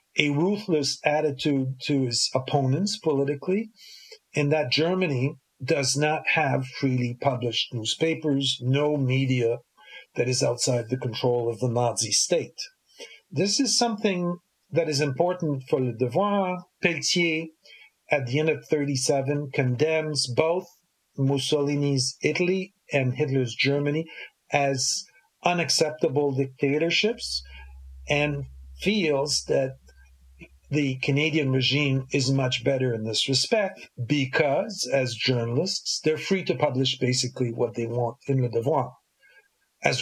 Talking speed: 120 wpm